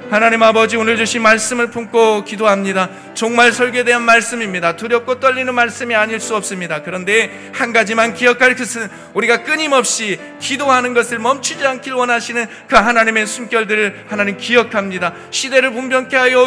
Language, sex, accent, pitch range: Korean, male, native, 230-270 Hz